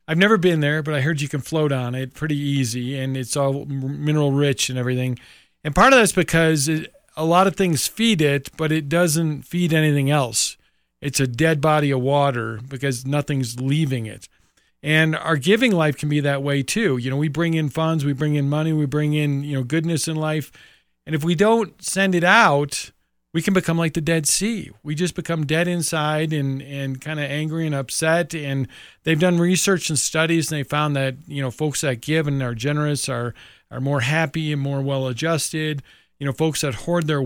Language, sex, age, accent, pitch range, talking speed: English, male, 40-59, American, 135-160 Hz, 215 wpm